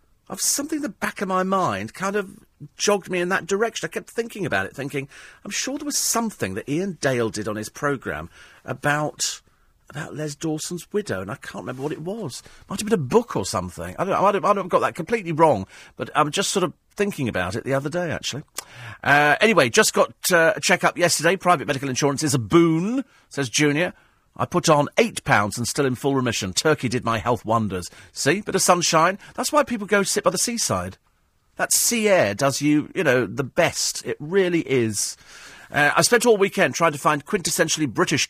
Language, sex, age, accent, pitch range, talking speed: English, male, 40-59, British, 120-185 Hz, 220 wpm